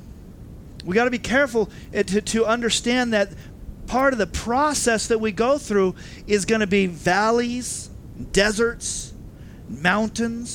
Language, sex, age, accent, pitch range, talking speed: English, male, 40-59, American, 135-205 Hz, 135 wpm